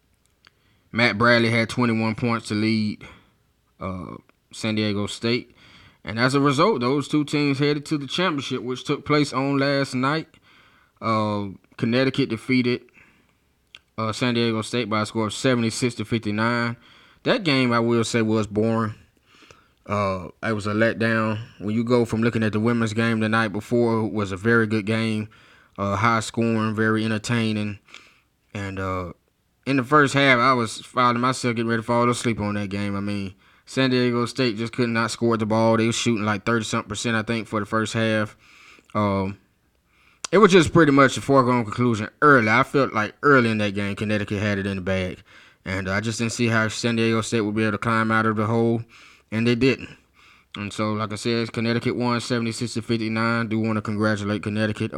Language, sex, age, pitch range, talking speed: English, male, 20-39, 105-120 Hz, 190 wpm